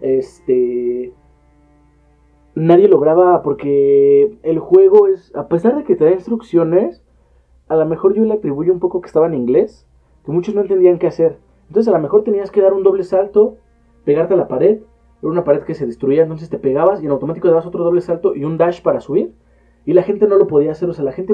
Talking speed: 220 wpm